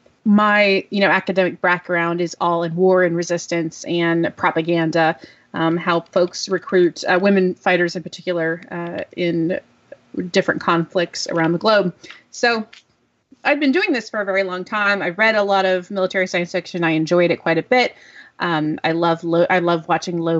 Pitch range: 170-235 Hz